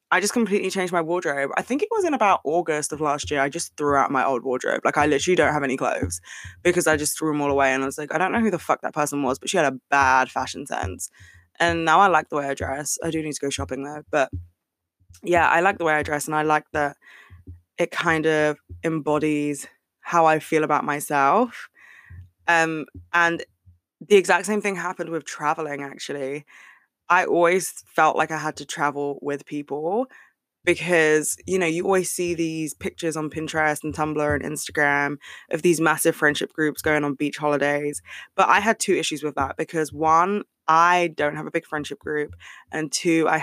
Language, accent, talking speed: English, British, 215 wpm